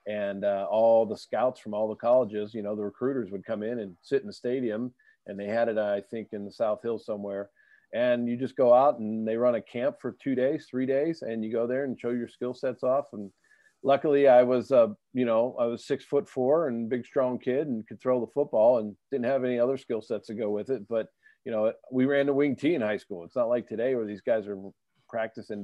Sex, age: male, 40-59